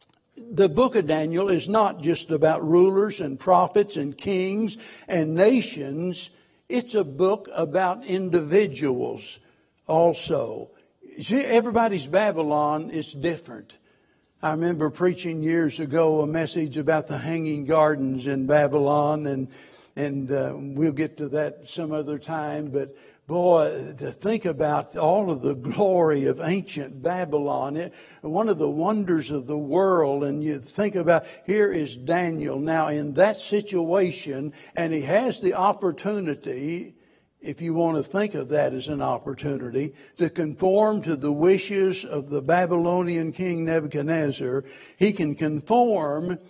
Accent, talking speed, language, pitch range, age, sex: American, 140 wpm, English, 150-185 Hz, 60-79, male